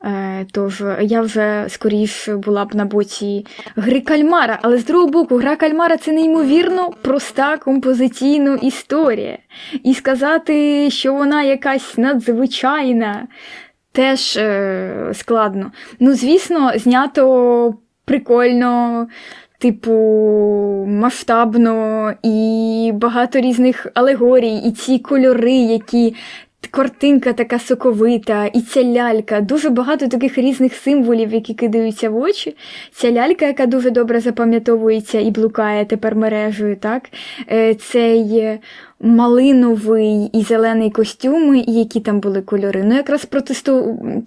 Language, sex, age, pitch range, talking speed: Ukrainian, female, 20-39, 220-260 Hz, 110 wpm